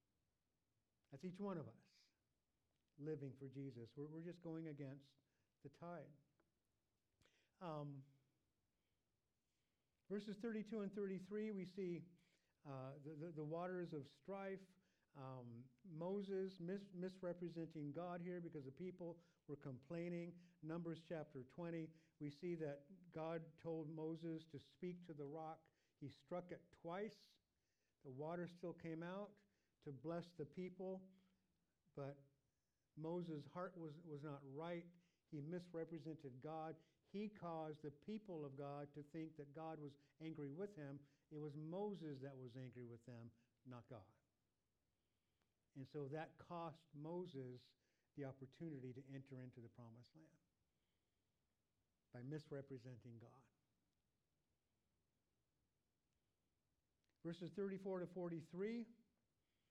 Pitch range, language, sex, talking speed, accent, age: 140-175 Hz, English, male, 120 wpm, American, 50-69